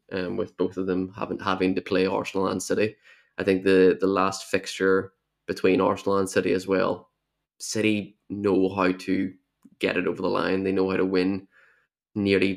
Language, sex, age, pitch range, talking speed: English, male, 20-39, 95-100 Hz, 190 wpm